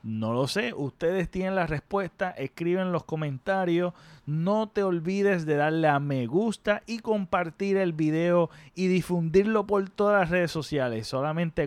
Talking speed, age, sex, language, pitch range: 155 wpm, 30-49, male, Spanish, 145-180 Hz